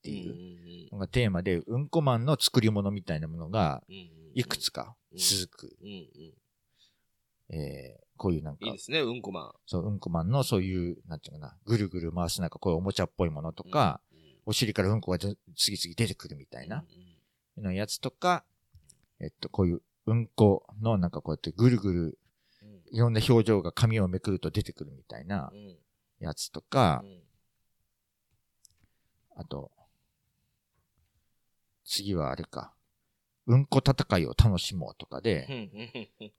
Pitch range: 90-120 Hz